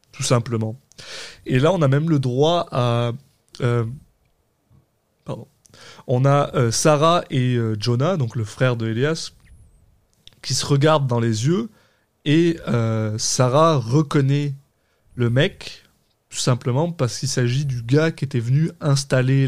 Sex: male